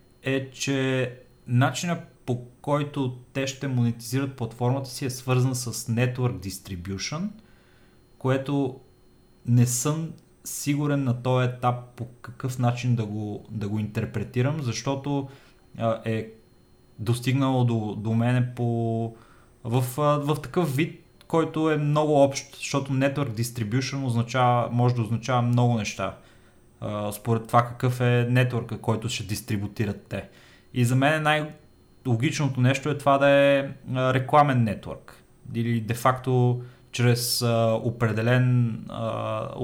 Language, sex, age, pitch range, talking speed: Bulgarian, male, 30-49, 115-130 Hz, 125 wpm